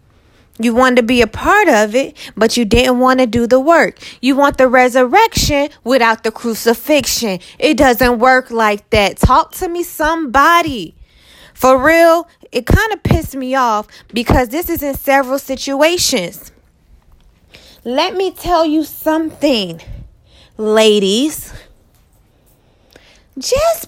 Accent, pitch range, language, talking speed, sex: American, 245-310 Hz, English, 135 wpm, female